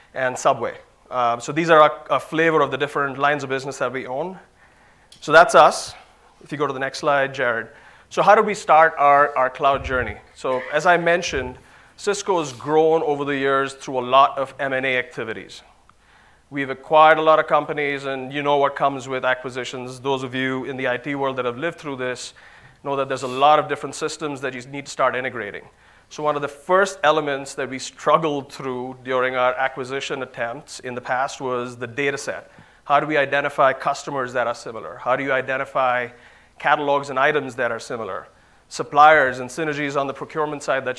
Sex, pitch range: male, 130-150 Hz